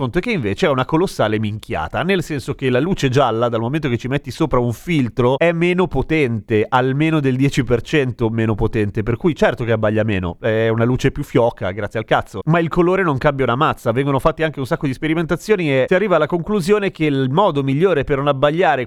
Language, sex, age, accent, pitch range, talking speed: Italian, male, 30-49, native, 125-165 Hz, 220 wpm